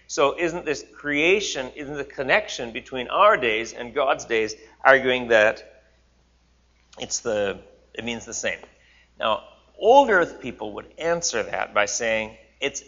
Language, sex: English, male